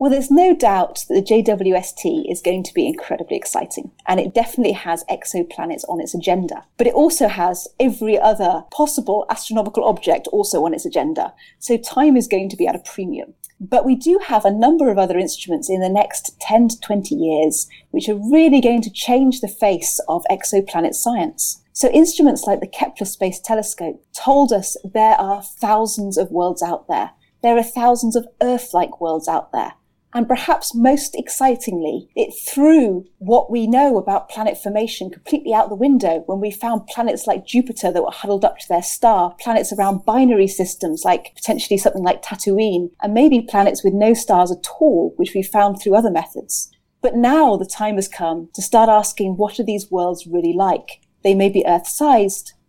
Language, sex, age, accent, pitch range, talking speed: English, female, 30-49, British, 190-250 Hz, 190 wpm